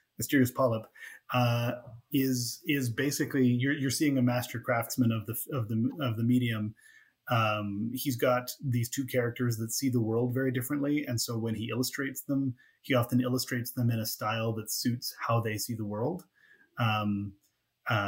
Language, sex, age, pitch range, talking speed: English, male, 30-49, 110-130 Hz, 175 wpm